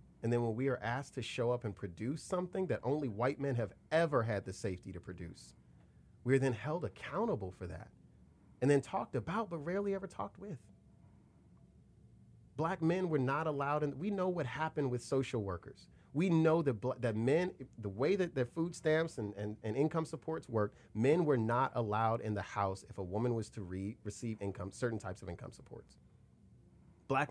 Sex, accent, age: male, American, 30-49